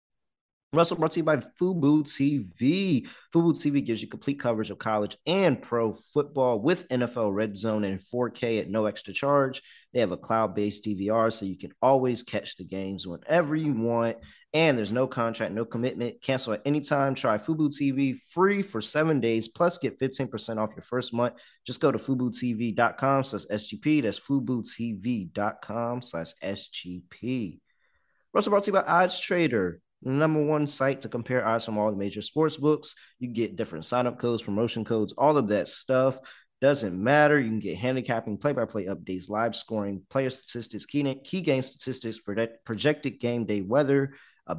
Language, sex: English, male